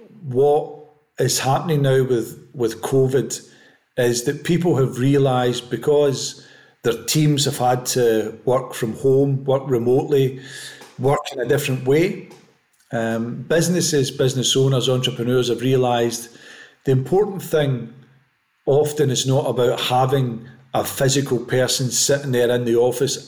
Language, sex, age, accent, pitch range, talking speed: English, male, 50-69, British, 120-140 Hz, 130 wpm